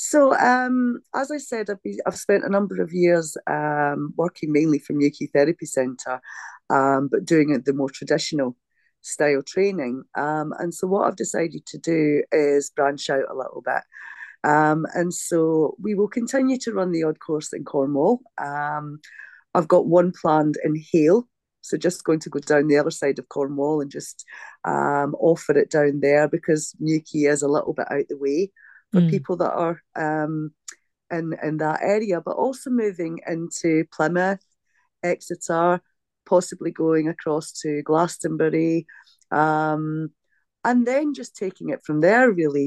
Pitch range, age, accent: 150-180 Hz, 40-59, British